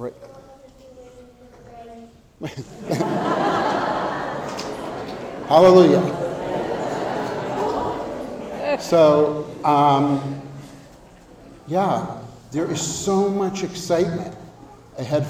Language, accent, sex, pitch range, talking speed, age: English, American, male, 120-155 Hz, 45 wpm, 60-79